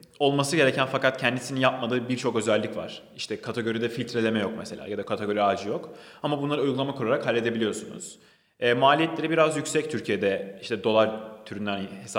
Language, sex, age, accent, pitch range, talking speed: Turkish, male, 30-49, native, 105-135 Hz, 155 wpm